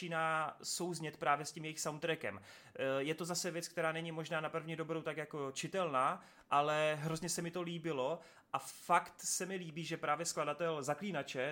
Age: 30-49